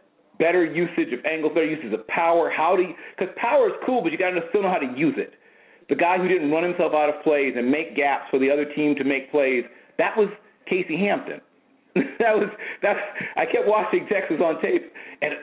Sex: male